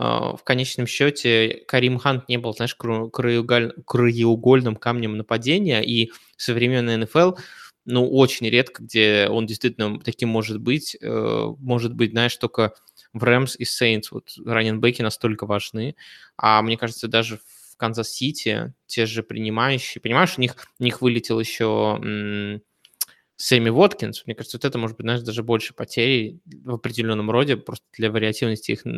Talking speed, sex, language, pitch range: 145 wpm, male, Russian, 110-125 Hz